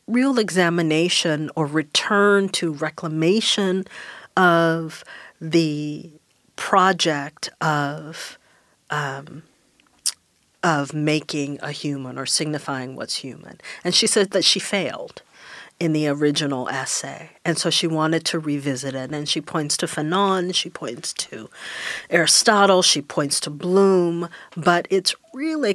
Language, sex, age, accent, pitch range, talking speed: English, female, 40-59, American, 150-180 Hz, 120 wpm